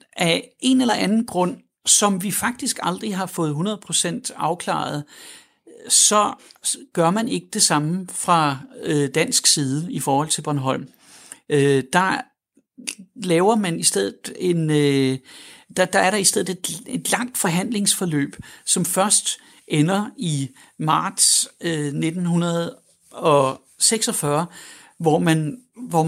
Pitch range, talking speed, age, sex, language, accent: 150-200 Hz, 115 wpm, 60-79, male, Danish, native